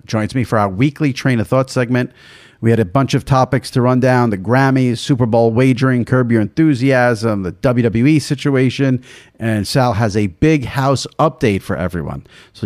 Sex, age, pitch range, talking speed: male, 50-69, 110-140 Hz, 185 wpm